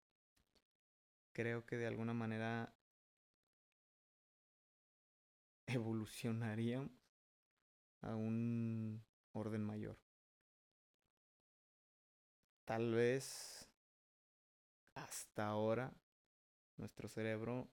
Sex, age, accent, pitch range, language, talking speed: male, 20-39, Mexican, 110-120 Hz, Spanish, 55 wpm